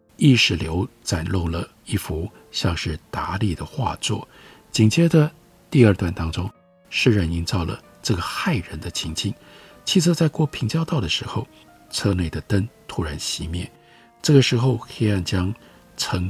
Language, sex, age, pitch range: Chinese, male, 50-69, 85-130 Hz